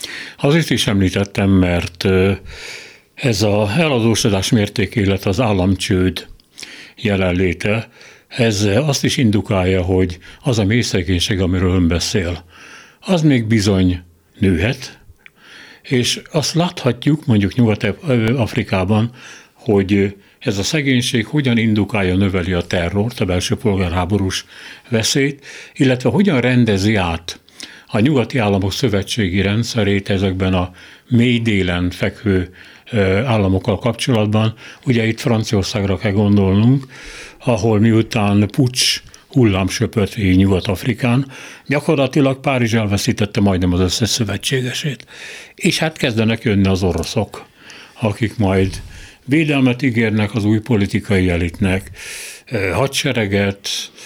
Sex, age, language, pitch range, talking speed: male, 60-79, Hungarian, 95-120 Hz, 105 wpm